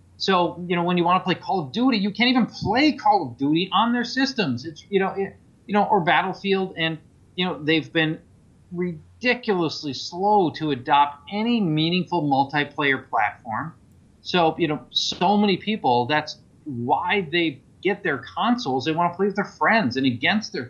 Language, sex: English, male